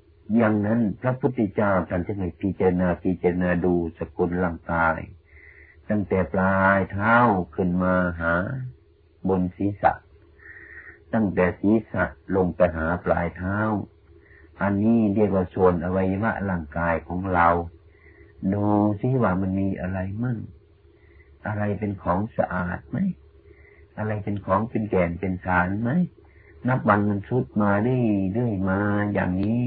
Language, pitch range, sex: Thai, 85-105 Hz, male